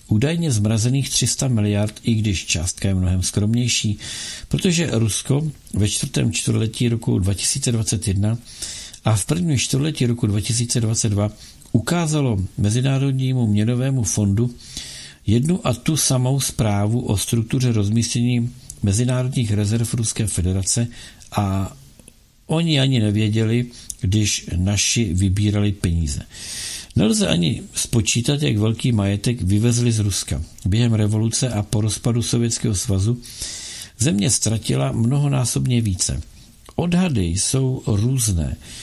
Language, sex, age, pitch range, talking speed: Czech, male, 50-69, 105-125 Hz, 110 wpm